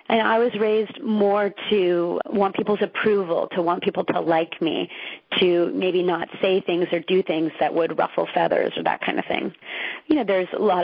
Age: 30-49